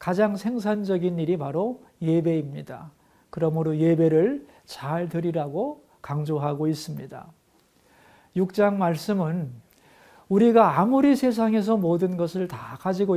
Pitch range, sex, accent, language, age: 160-210 Hz, male, native, Korean, 50-69